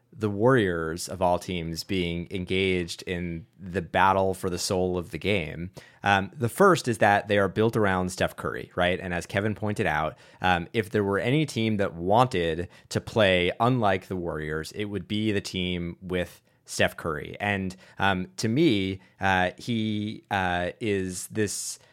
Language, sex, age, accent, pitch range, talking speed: English, male, 20-39, American, 90-110 Hz, 170 wpm